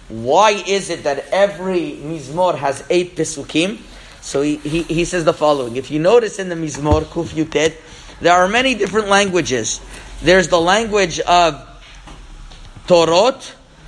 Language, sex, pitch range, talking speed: English, male, 170-195 Hz, 145 wpm